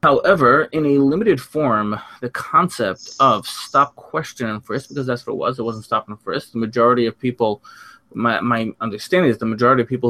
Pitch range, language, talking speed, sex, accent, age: 115-135 Hz, English, 200 wpm, male, American, 20-39